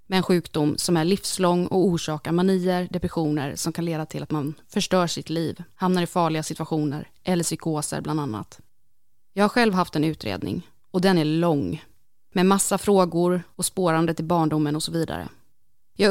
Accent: native